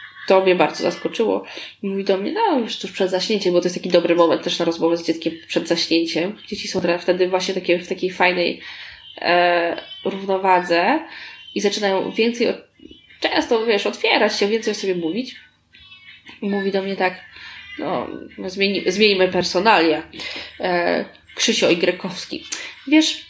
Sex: female